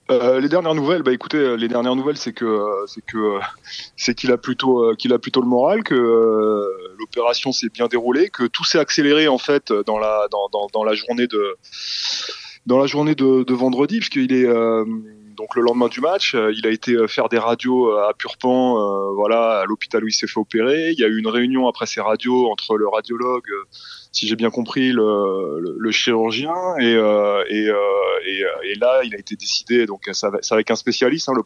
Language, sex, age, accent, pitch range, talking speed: French, male, 20-39, French, 110-130 Hz, 225 wpm